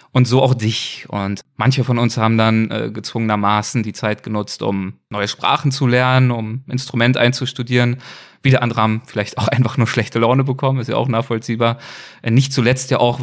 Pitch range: 105-130 Hz